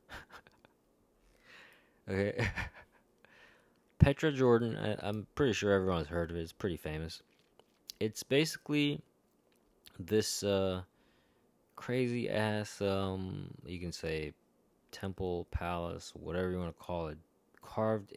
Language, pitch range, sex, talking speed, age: English, 85-105 Hz, male, 110 wpm, 20-39